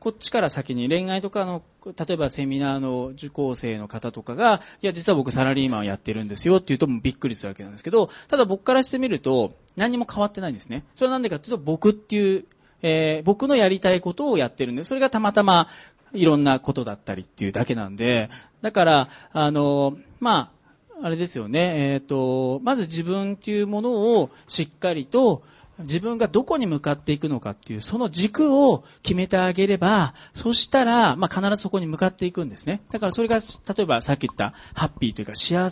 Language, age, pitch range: Japanese, 40-59, 135-210 Hz